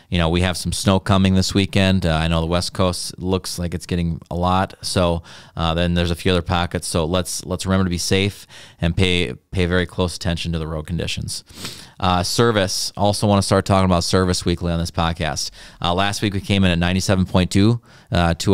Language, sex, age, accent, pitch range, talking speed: English, male, 30-49, American, 85-95 Hz, 225 wpm